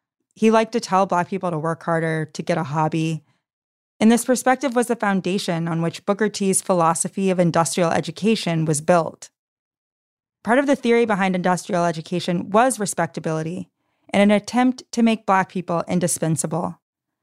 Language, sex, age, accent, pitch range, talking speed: English, female, 20-39, American, 170-215 Hz, 160 wpm